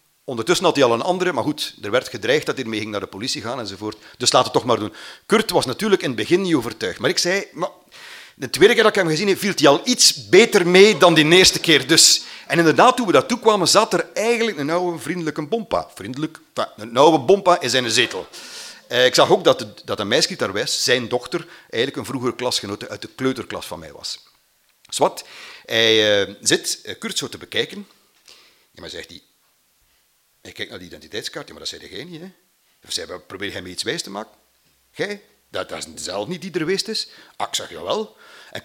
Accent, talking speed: Belgian, 230 wpm